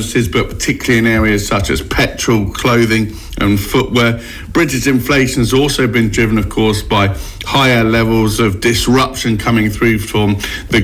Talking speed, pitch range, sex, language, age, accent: 150 wpm, 110-135 Hz, male, English, 50-69, British